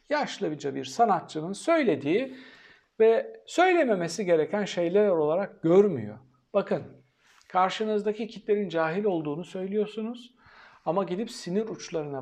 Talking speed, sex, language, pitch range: 100 wpm, male, Turkish, 165-235 Hz